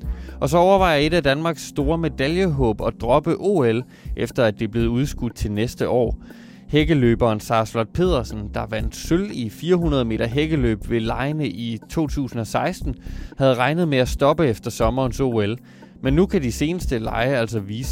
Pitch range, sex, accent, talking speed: 110-145 Hz, male, native, 165 wpm